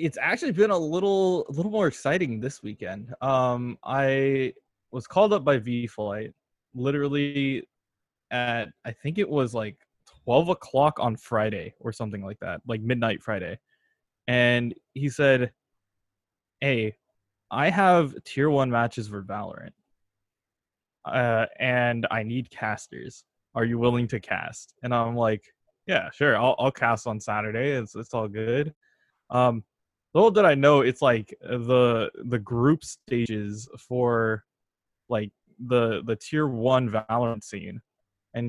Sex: male